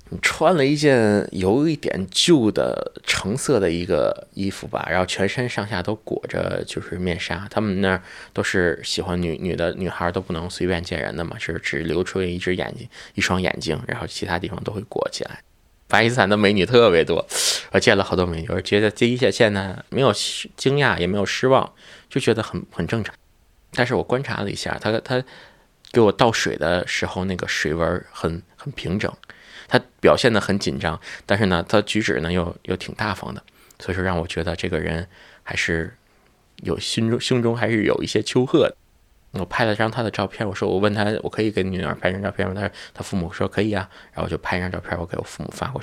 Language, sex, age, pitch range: Chinese, male, 20-39, 90-110 Hz